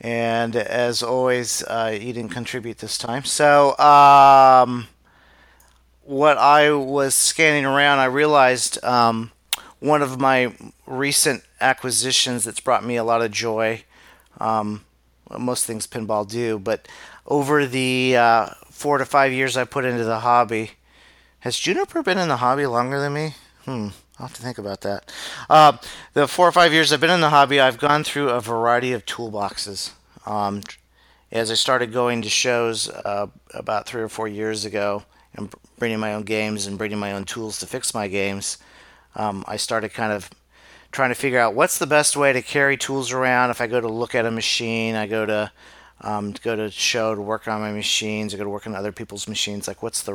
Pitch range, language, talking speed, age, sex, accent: 105-130 Hz, English, 190 wpm, 40-59, male, American